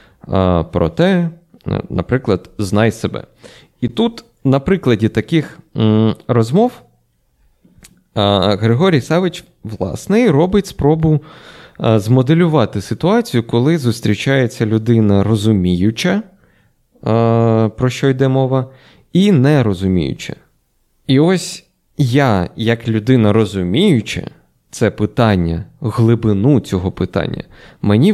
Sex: male